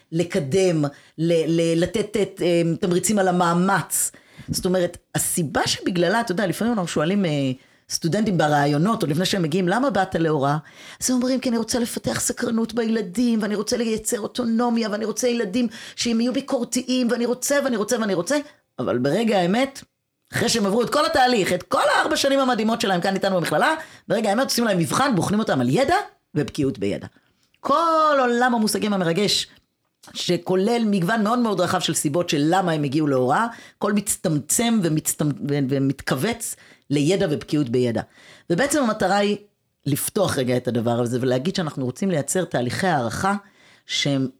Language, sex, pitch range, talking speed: Hebrew, female, 165-230 Hz, 140 wpm